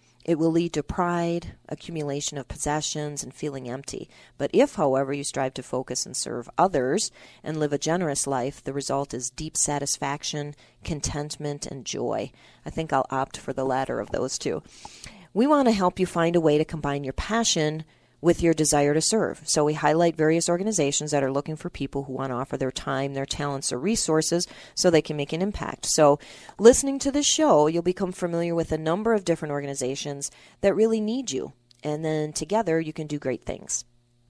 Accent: American